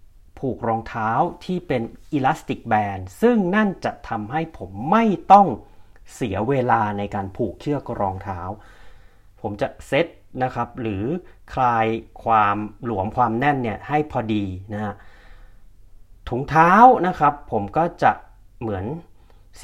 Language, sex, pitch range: Thai, male, 100-135 Hz